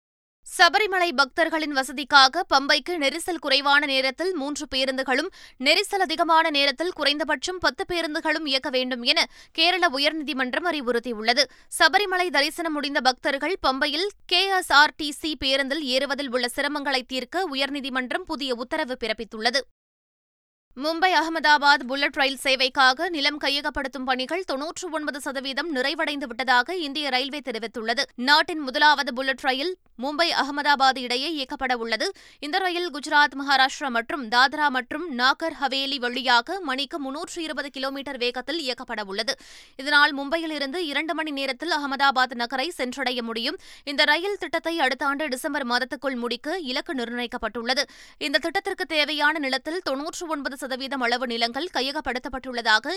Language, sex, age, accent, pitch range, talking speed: Tamil, female, 20-39, native, 260-315 Hz, 115 wpm